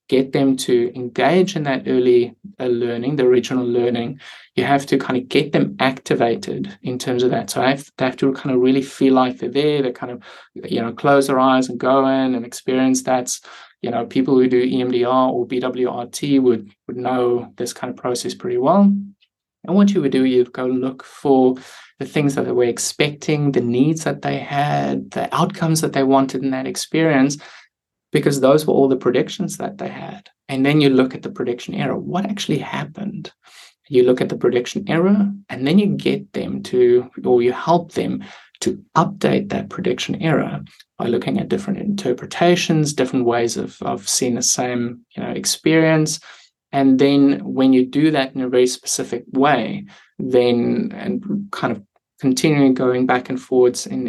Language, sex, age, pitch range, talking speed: English, male, 20-39, 125-145 Hz, 190 wpm